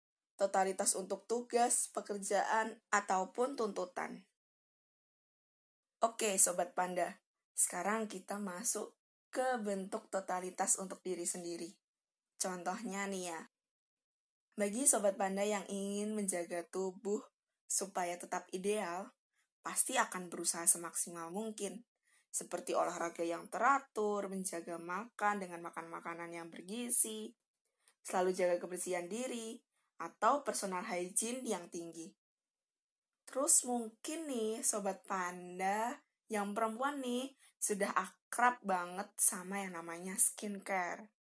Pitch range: 180-220 Hz